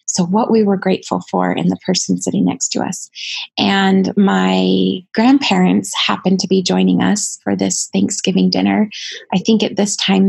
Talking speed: 175 wpm